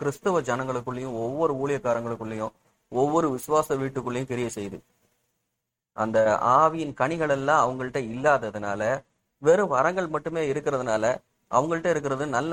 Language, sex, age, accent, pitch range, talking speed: Tamil, male, 30-49, native, 120-150 Hz, 105 wpm